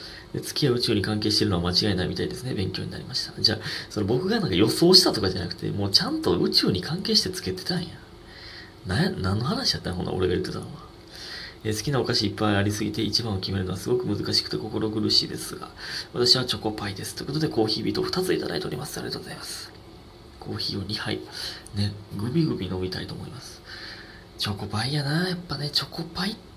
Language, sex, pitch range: Japanese, male, 95-135 Hz